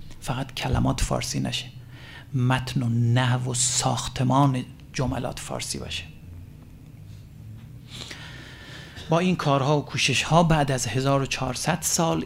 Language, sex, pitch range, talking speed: Persian, male, 110-135 Hz, 105 wpm